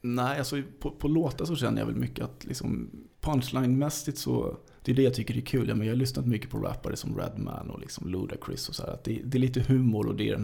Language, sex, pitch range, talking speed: English, male, 115-140 Hz, 260 wpm